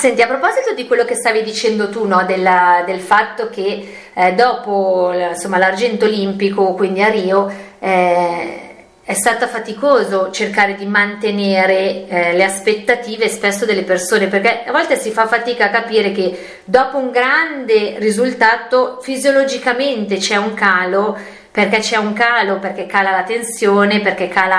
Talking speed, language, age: 145 wpm, Italian, 30-49